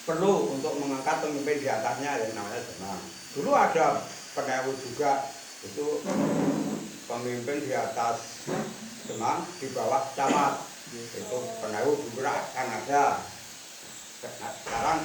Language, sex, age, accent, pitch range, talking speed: Indonesian, male, 60-79, native, 135-195 Hz, 105 wpm